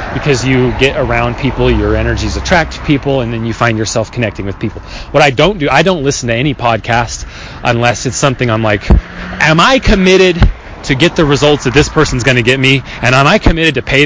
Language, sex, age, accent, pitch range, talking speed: English, male, 20-39, American, 110-160 Hz, 220 wpm